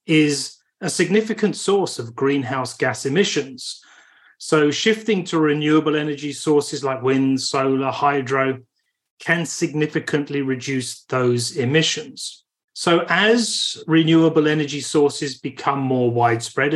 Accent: British